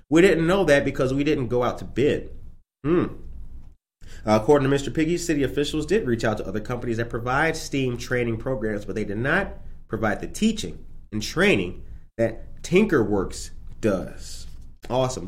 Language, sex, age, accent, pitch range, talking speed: English, male, 30-49, American, 105-140 Hz, 165 wpm